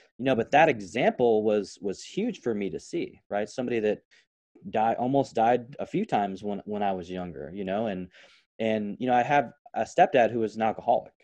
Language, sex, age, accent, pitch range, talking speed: English, male, 20-39, American, 100-130 Hz, 215 wpm